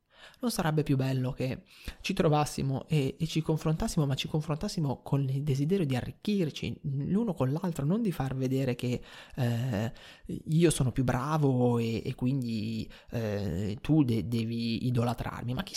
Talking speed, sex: 155 wpm, male